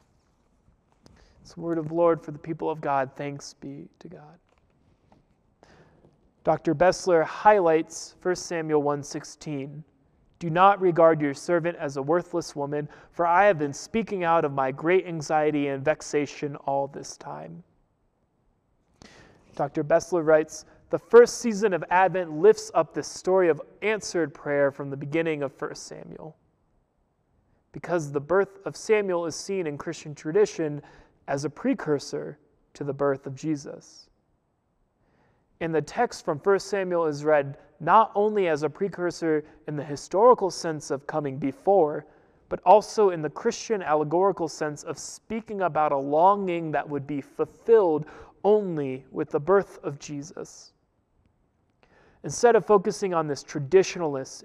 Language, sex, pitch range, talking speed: English, male, 145-185 Hz, 145 wpm